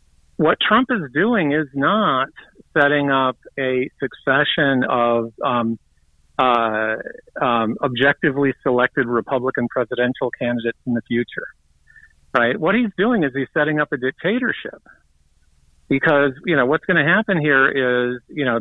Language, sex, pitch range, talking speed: English, male, 125-150 Hz, 140 wpm